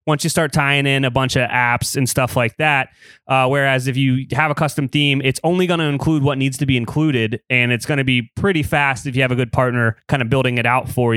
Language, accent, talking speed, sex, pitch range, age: English, American, 270 wpm, male, 120-150 Hz, 20-39